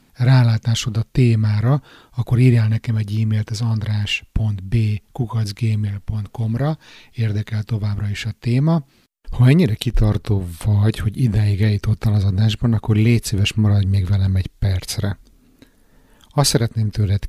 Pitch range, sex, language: 100-120 Hz, male, Hungarian